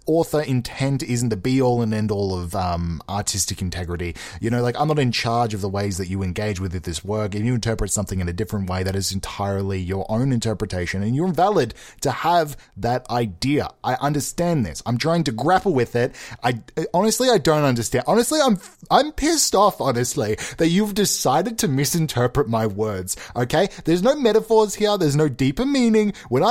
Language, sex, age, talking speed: English, male, 20-39, 200 wpm